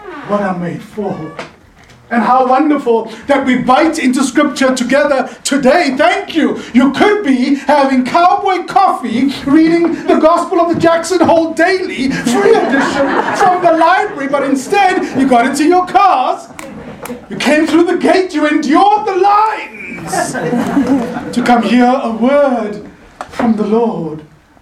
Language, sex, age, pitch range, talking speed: English, male, 30-49, 220-310 Hz, 145 wpm